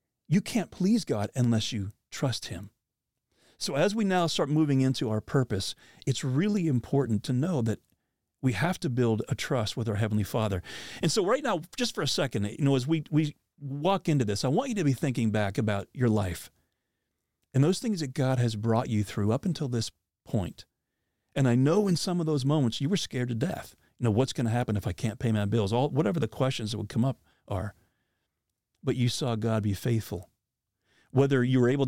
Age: 40-59